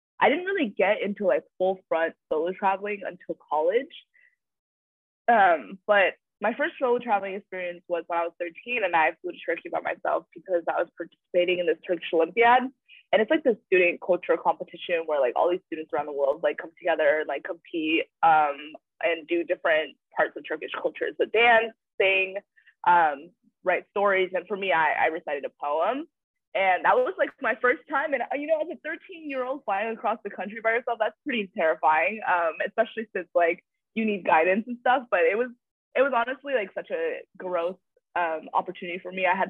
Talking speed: 200 wpm